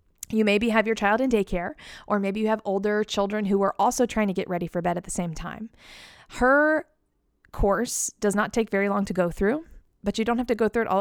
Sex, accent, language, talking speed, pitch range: female, American, English, 245 wpm, 190-240 Hz